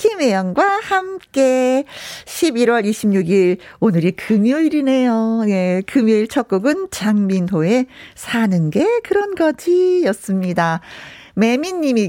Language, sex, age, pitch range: Korean, female, 40-59, 195-285 Hz